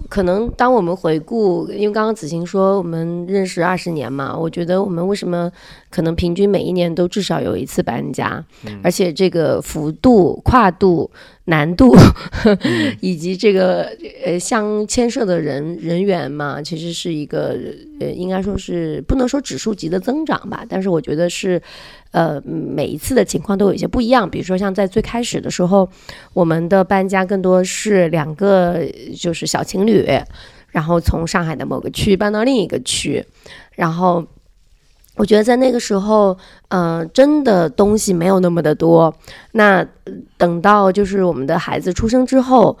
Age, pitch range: 30-49, 170-205 Hz